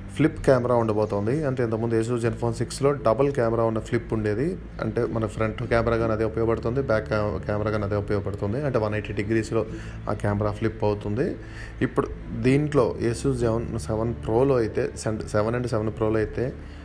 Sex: male